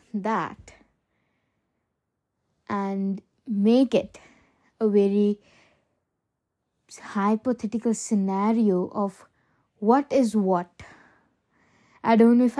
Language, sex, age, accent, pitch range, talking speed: English, female, 20-39, Indian, 205-255 Hz, 75 wpm